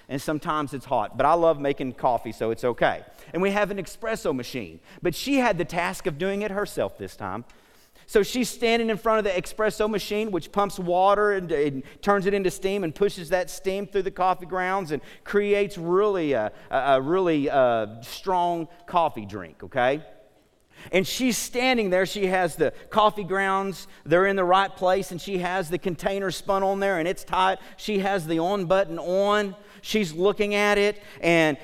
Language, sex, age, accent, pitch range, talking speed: English, male, 40-59, American, 165-210 Hz, 195 wpm